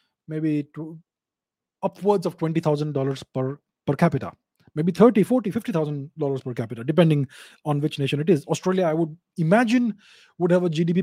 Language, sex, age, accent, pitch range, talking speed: English, male, 30-49, Indian, 150-190 Hz, 150 wpm